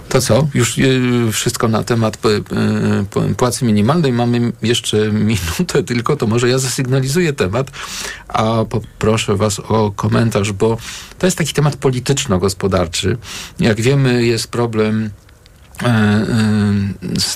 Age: 50-69